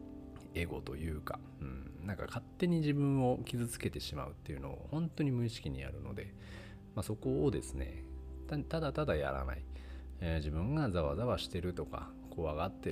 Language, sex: Japanese, male